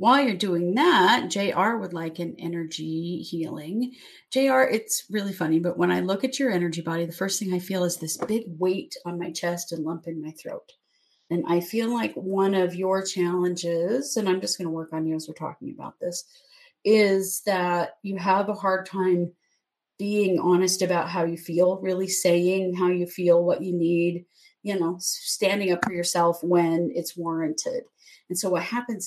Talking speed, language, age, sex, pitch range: 195 wpm, English, 30-49, female, 175-230 Hz